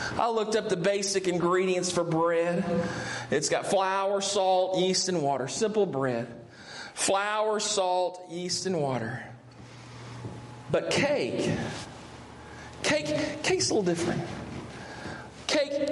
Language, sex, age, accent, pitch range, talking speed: English, male, 40-59, American, 170-220 Hz, 115 wpm